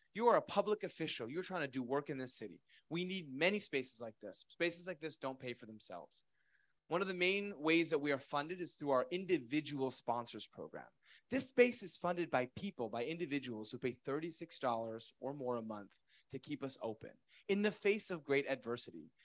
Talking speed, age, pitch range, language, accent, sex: 205 wpm, 30-49, 135-180 Hz, English, American, male